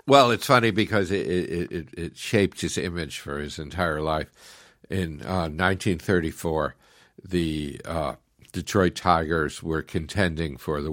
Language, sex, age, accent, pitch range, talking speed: English, male, 60-79, American, 80-95 Hz, 135 wpm